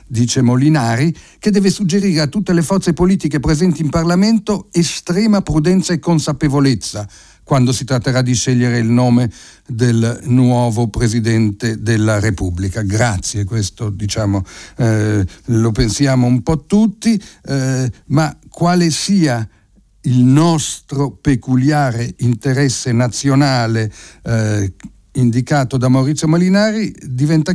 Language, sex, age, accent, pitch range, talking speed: Italian, male, 60-79, native, 120-170 Hz, 115 wpm